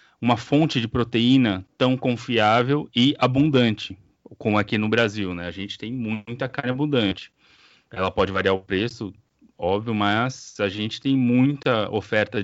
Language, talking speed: Portuguese, 150 wpm